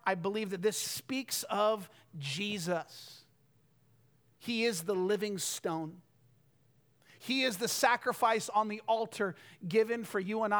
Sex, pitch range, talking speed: male, 160-225 Hz, 130 wpm